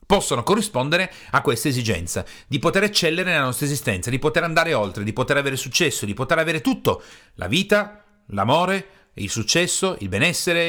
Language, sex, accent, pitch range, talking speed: Italian, male, native, 110-165 Hz, 170 wpm